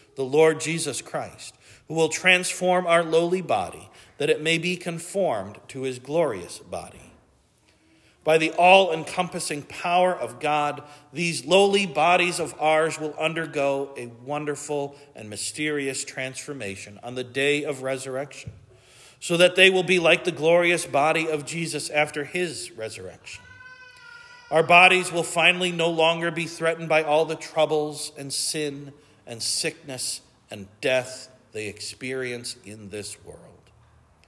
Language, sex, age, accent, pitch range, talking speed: English, male, 40-59, American, 130-170 Hz, 140 wpm